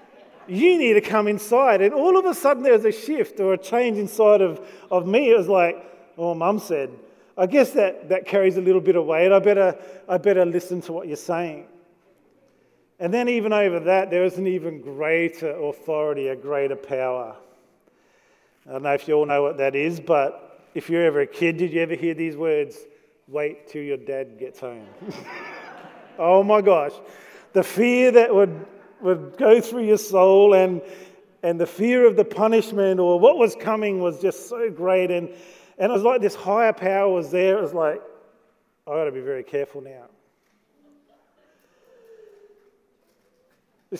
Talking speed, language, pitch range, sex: 185 wpm, English, 170-215 Hz, male